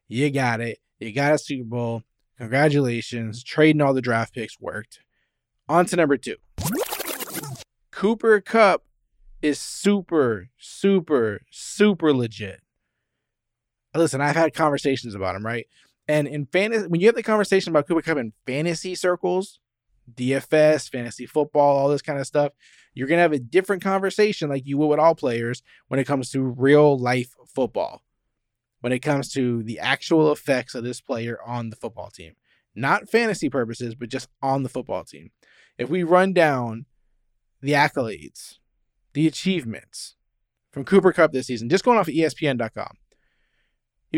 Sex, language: male, English